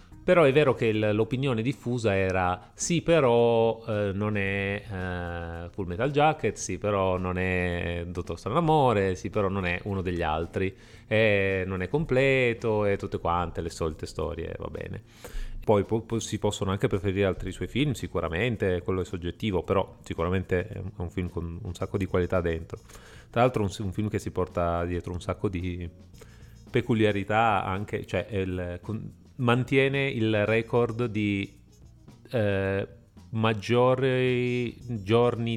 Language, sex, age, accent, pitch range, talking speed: Italian, male, 30-49, native, 95-115 Hz, 145 wpm